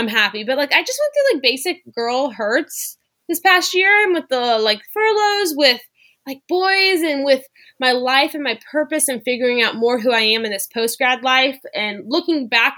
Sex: female